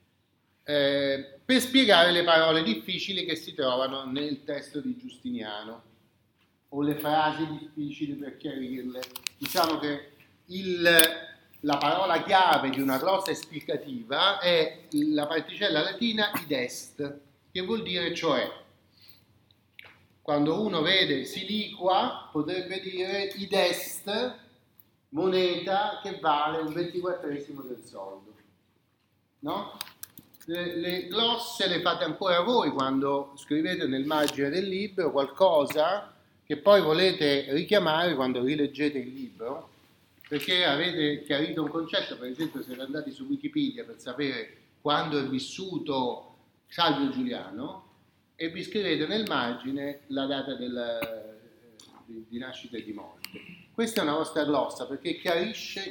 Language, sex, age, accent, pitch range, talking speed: Italian, male, 40-59, native, 135-185 Hz, 120 wpm